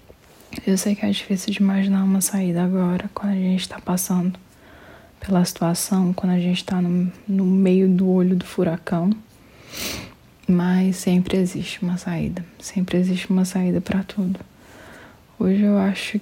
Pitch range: 185-210 Hz